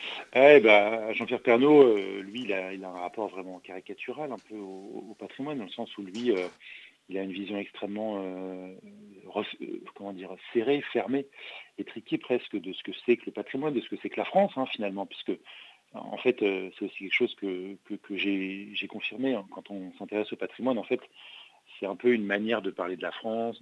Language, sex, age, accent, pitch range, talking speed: French, male, 40-59, French, 95-130 Hz, 210 wpm